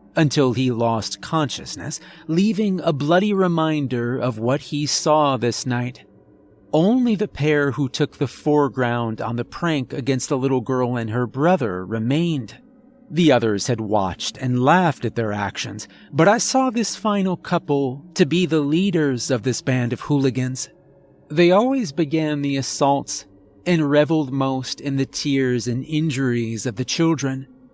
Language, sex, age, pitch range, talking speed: English, male, 40-59, 125-170 Hz, 155 wpm